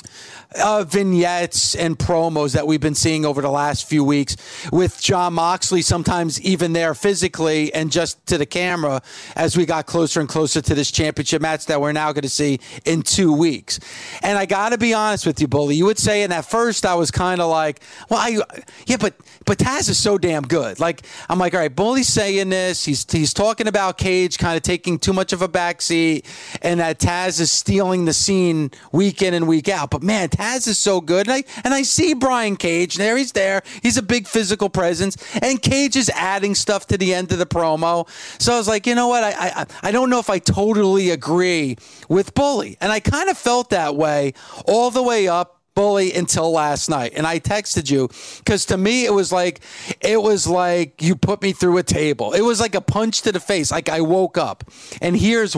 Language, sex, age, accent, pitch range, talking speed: English, male, 40-59, American, 160-205 Hz, 220 wpm